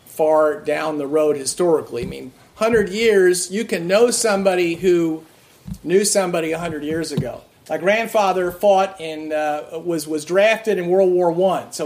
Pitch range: 165-215 Hz